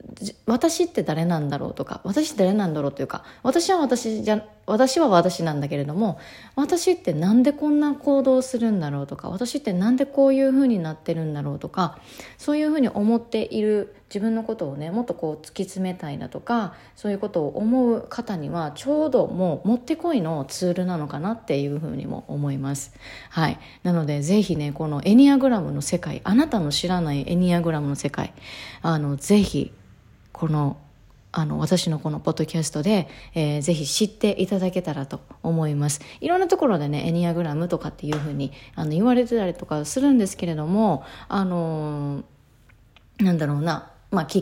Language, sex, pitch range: Japanese, female, 150-220 Hz